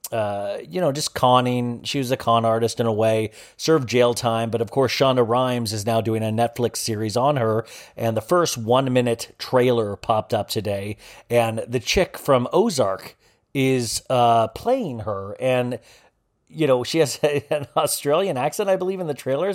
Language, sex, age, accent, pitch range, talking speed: English, male, 30-49, American, 115-140 Hz, 185 wpm